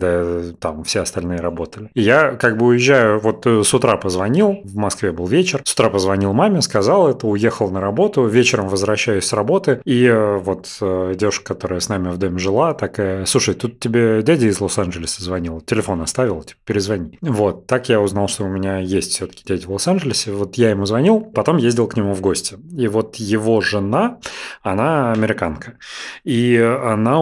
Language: Russian